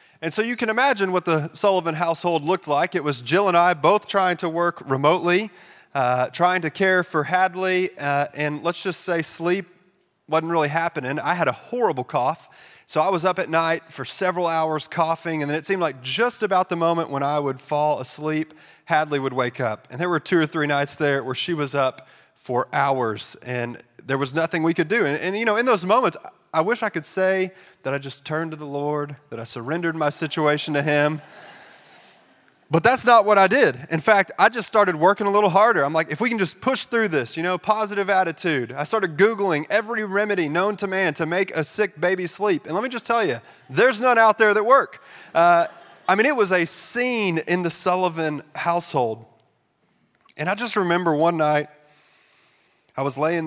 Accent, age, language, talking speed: American, 30-49, English, 215 wpm